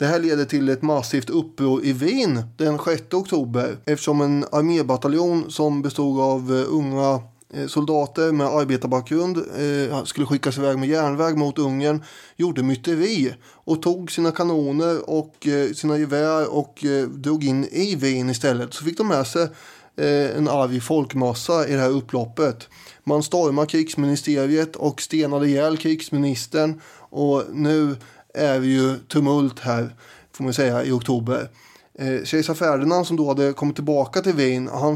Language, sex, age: English, male, 20-39